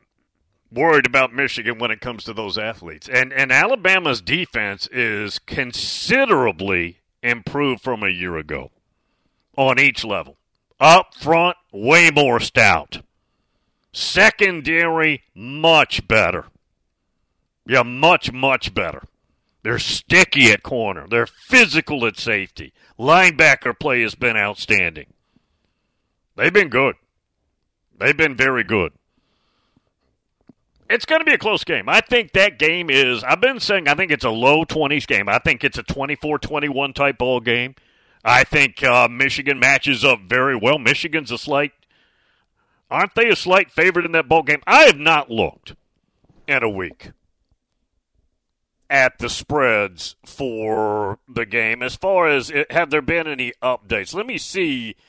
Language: English